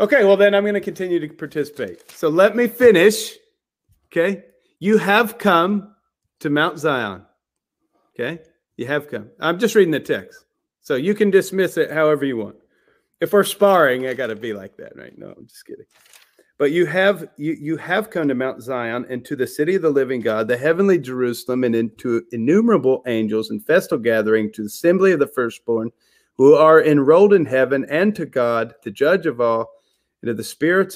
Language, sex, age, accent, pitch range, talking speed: English, male, 40-59, American, 125-185 Hz, 190 wpm